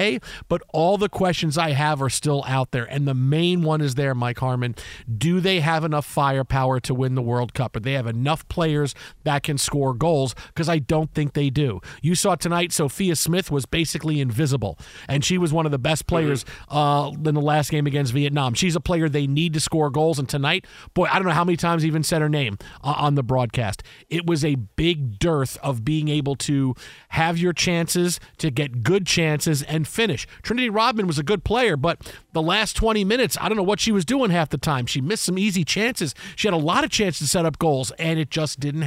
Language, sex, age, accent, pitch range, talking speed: English, male, 40-59, American, 140-175 Hz, 230 wpm